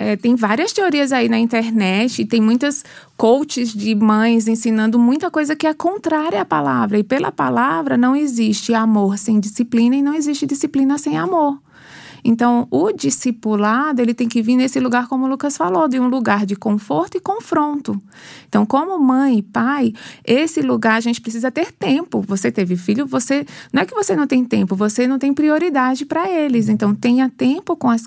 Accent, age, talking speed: Brazilian, 20-39, 190 wpm